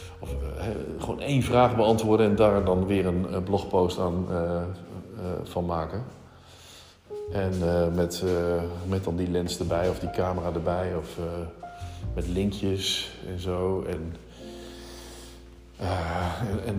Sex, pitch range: male, 90-110 Hz